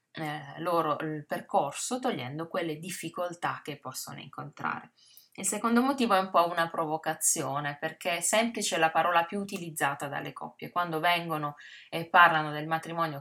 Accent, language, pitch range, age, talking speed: native, Italian, 150-175 Hz, 20-39, 150 wpm